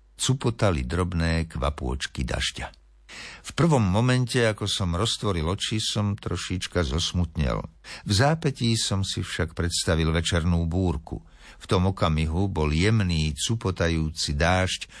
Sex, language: male, Slovak